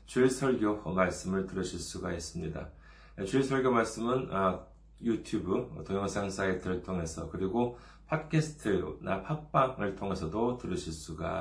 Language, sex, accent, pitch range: Korean, male, native, 80-105 Hz